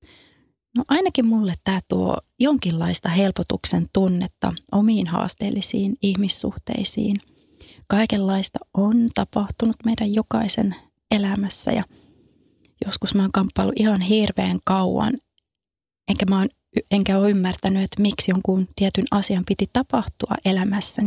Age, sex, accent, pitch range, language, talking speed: 30-49, female, native, 185-220 Hz, Finnish, 110 wpm